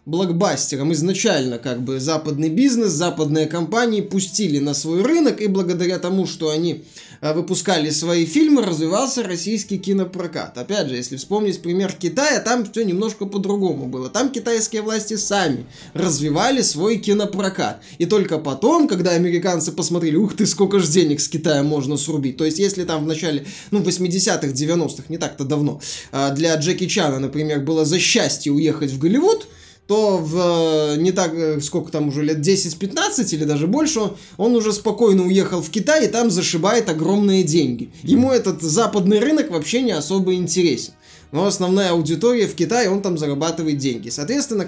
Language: Russian